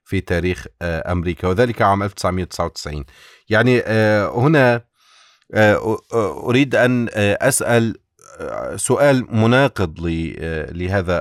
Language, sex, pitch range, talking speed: Arabic, male, 80-100 Hz, 75 wpm